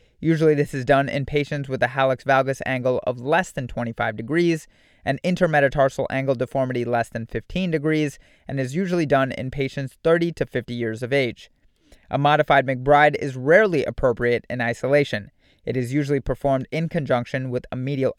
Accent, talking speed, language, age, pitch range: American, 175 wpm, English, 30-49, 120-150 Hz